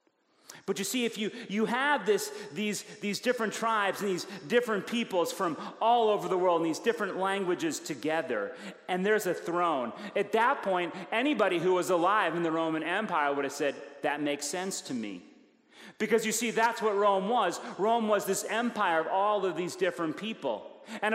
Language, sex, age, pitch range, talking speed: English, male, 40-59, 160-215 Hz, 185 wpm